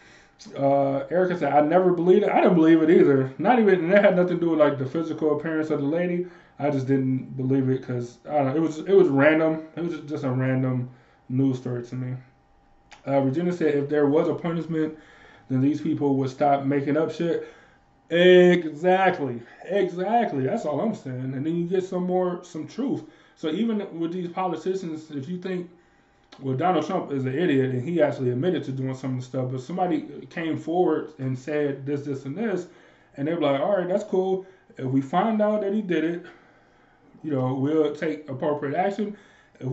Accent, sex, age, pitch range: American, male, 20-39, 135-180 Hz